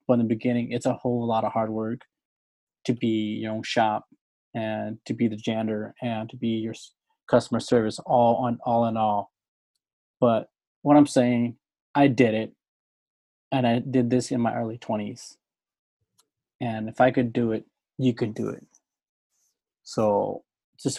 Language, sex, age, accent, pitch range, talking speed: English, male, 20-39, American, 115-125 Hz, 165 wpm